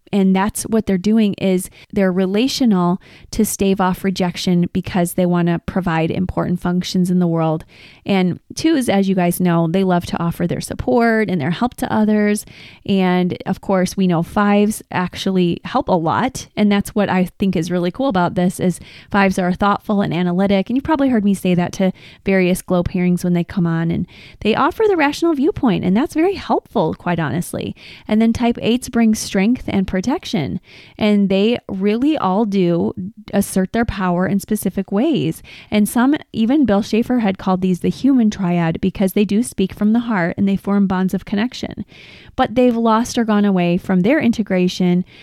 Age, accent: 20-39, American